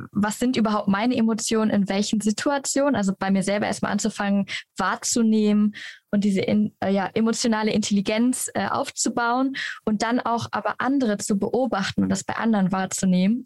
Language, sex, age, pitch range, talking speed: German, female, 10-29, 205-240 Hz, 150 wpm